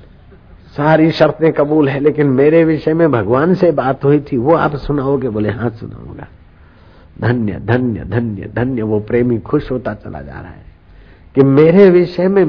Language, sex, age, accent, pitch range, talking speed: Hindi, male, 60-79, native, 105-145 Hz, 170 wpm